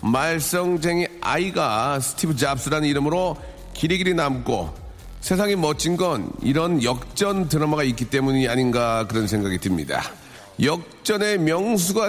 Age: 40-59